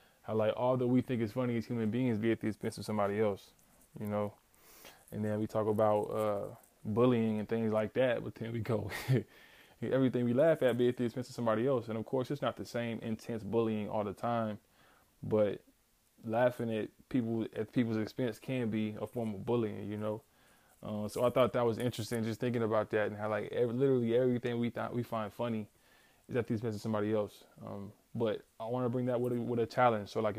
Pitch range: 110-125 Hz